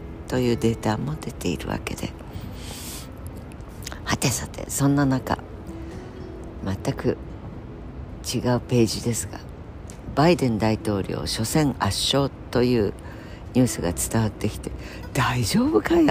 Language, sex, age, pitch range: Japanese, female, 60-79, 95-135 Hz